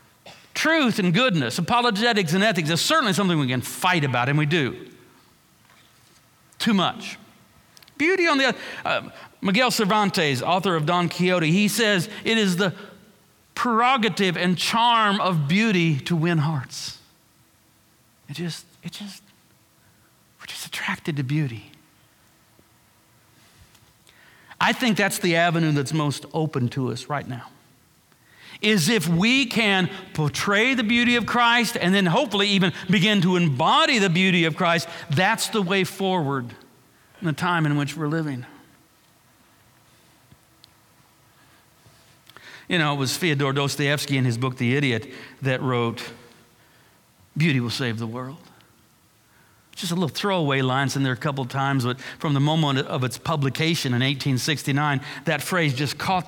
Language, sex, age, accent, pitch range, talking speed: English, male, 50-69, American, 135-195 Hz, 145 wpm